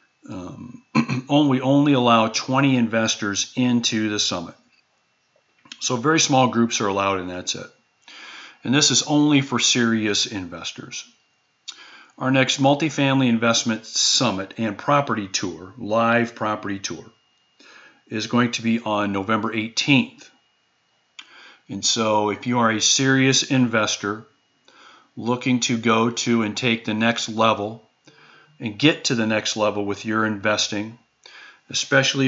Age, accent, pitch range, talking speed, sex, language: 40-59, American, 105-125 Hz, 130 wpm, male, English